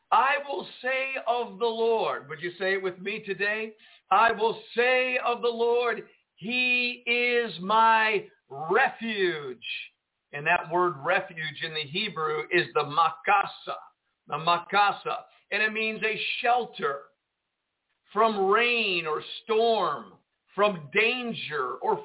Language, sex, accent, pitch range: English, male, American, 180-240 Hz